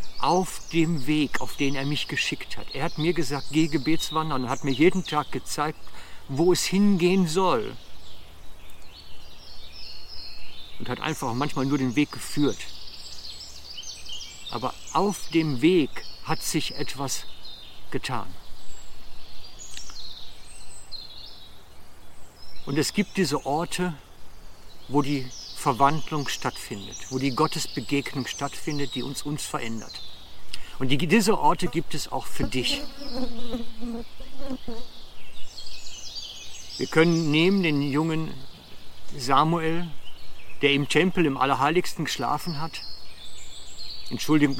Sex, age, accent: male, 50-69, German